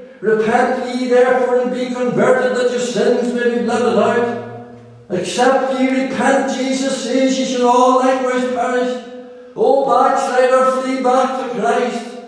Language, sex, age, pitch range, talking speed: English, male, 60-79, 245-265 Hz, 140 wpm